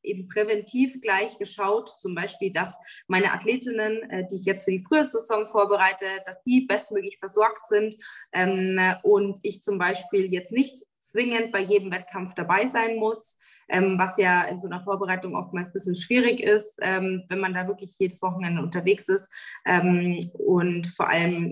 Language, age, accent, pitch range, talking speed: German, 20-39, German, 185-215 Hz, 165 wpm